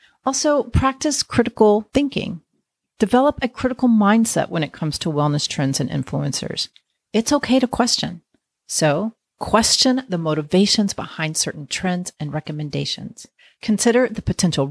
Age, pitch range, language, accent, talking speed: 40-59, 155-225 Hz, English, American, 130 wpm